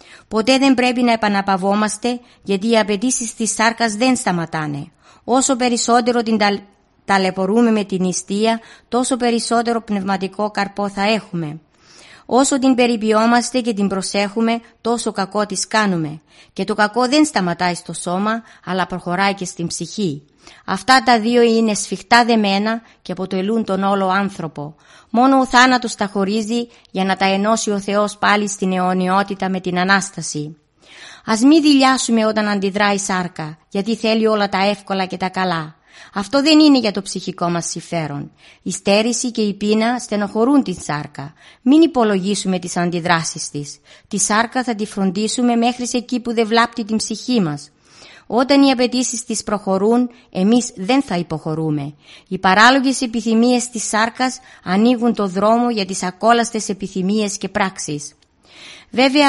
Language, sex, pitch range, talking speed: Greek, female, 185-235 Hz, 150 wpm